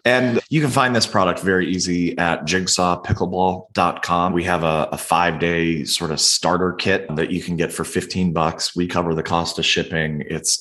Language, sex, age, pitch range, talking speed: English, male, 30-49, 85-115 Hz, 185 wpm